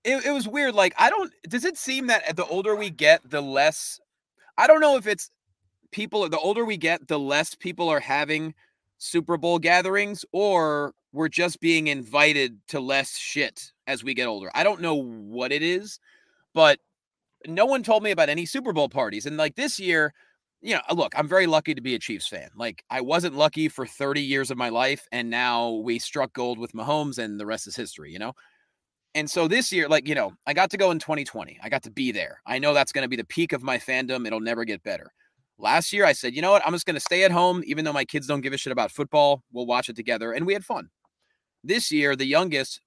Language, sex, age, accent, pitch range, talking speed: English, male, 30-49, American, 130-180 Hz, 240 wpm